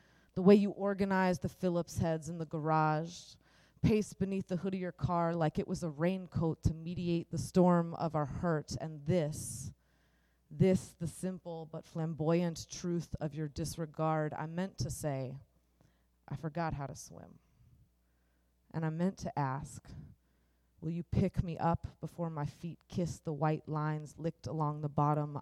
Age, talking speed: 30-49, 165 wpm